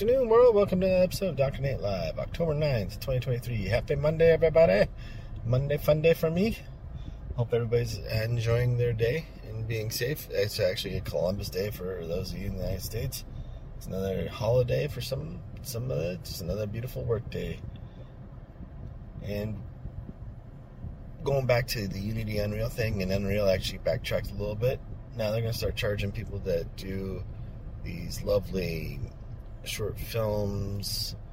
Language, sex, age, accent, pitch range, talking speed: English, male, 30-49, American, 100-120 Hz, 160 wpm